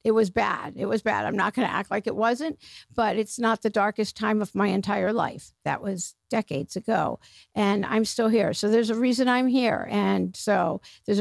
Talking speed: 220 wpm